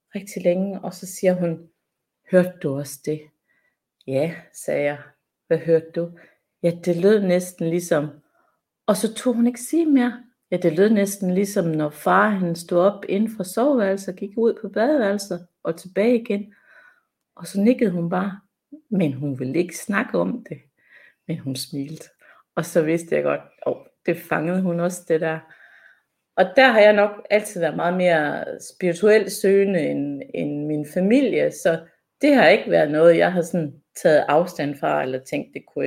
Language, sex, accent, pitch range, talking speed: Danish, female, native, 160-200 Hz, 175 wpm